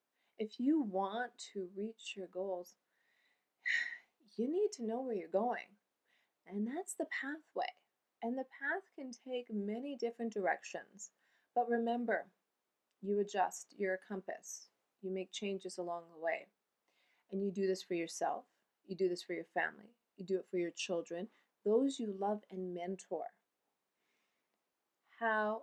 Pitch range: 180-230 Hz